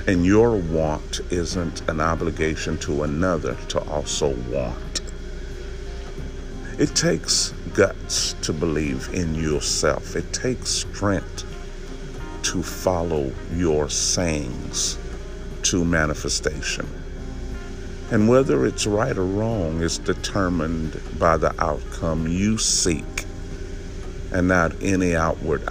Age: 50-69